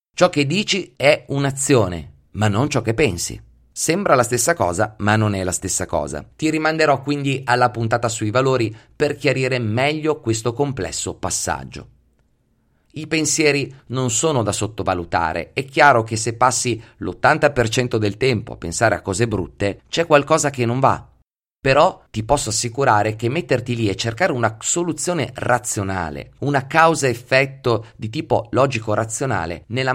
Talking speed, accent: 150 wpm, native